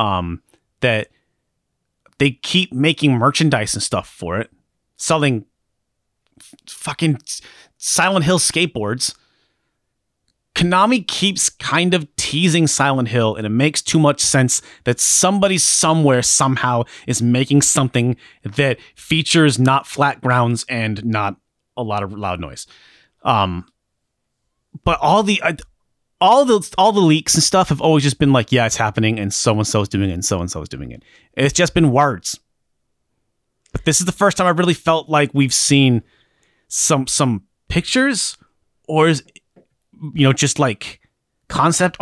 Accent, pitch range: American, 115-160 Hz